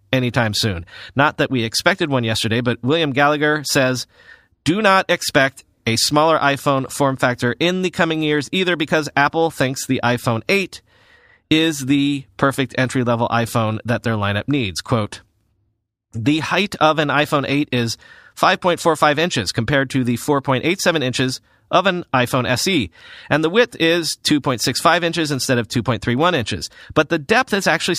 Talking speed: 160 wpm